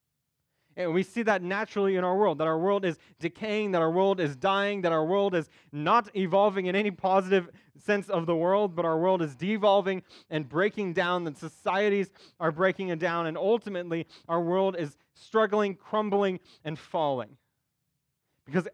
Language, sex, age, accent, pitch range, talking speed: English, male, 30-49, American, 155-205 Hz, 175 wpm